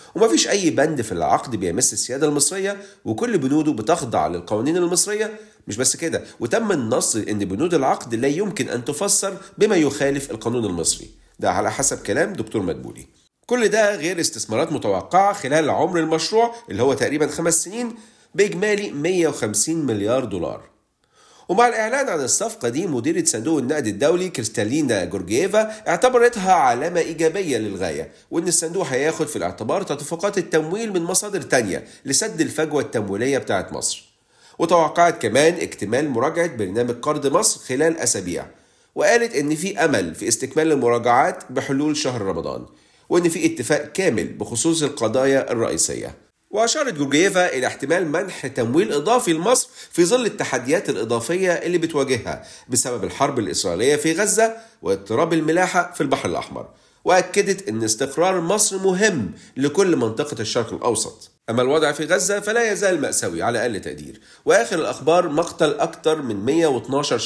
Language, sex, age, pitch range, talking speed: Arabic, male, 40-59, 145-205 Hz, 140 wpm